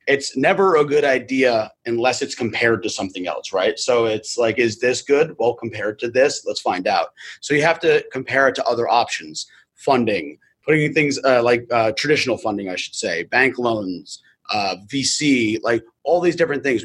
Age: 30-49